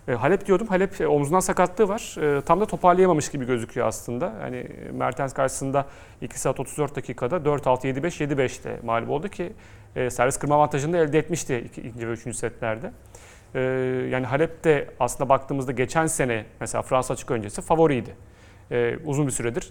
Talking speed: 165 wpm